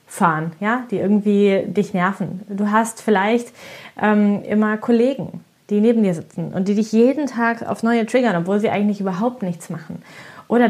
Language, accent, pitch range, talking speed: German, German, 190-230 Hz, 170 wpm